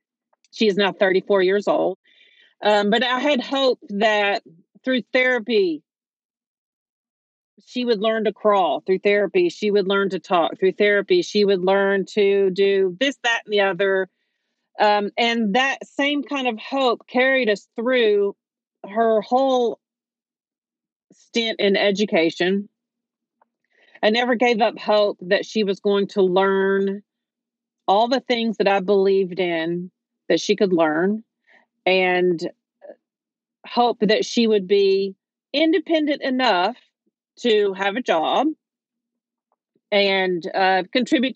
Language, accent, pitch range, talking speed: English, American, 195-250 Hz, 130 wpm